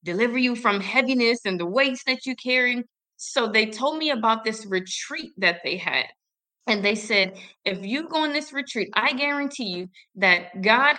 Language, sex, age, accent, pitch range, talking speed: English, female, 20-39, American, 190-255 Hz, 185 wpm